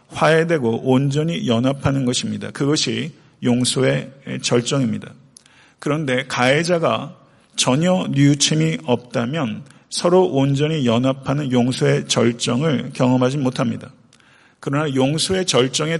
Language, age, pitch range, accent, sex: Korean, 40-59, 125-150 Hz, native, male